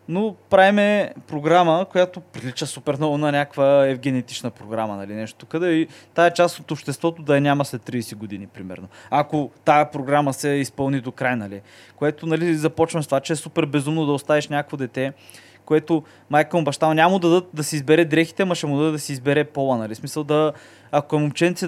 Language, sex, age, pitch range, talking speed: Bulgarian, male, 20-39, 125-165 Hz, 200 wpm